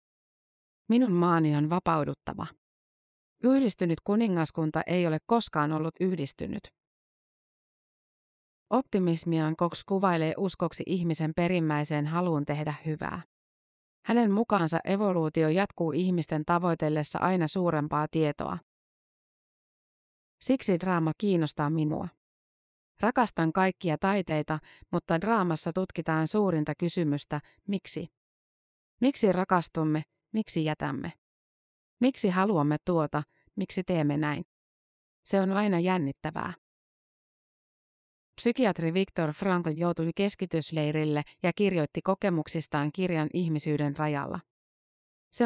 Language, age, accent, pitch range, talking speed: Finnish, 30-49, native, 155-190 Hz, 90 wpm